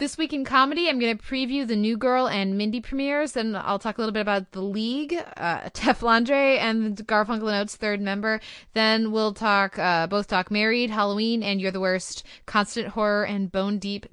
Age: 20-39